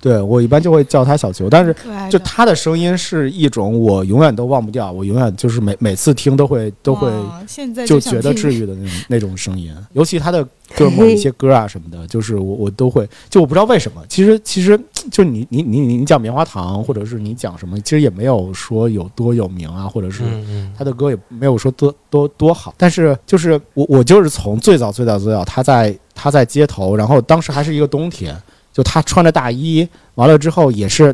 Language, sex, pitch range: Chinese, male, 105-145 Hz